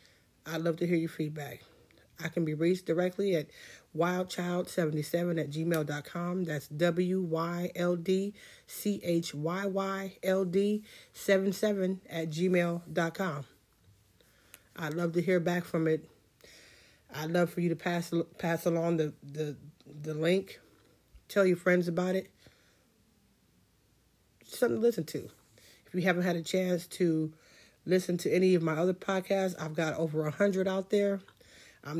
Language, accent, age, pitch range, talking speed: English, American, 30-49, 150-185 Hz, 130 wpm